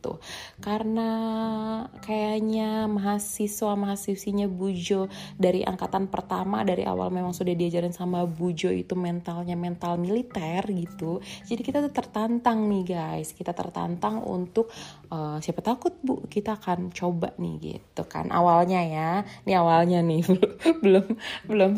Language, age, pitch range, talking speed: Indonesian, 20-39, 165-200 Hz, 125 wpm